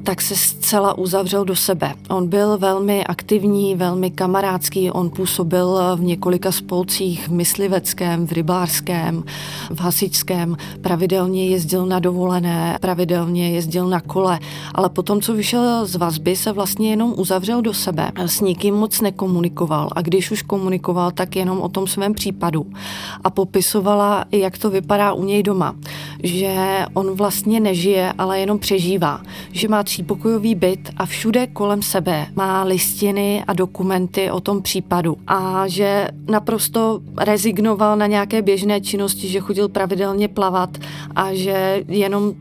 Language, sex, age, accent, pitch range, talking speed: Czech, female, 30-49, native, 180-200 Hz, 145 wpm